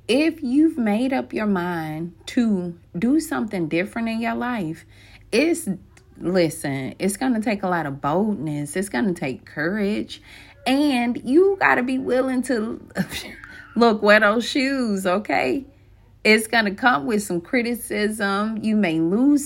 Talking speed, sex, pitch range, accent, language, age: 155 wpm, female, 145-235 Hz, American, English, 30-49